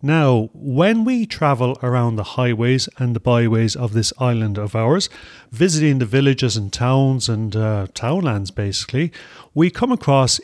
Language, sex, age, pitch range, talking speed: English, male, 40-59, 115-150 Hz, 155 wpm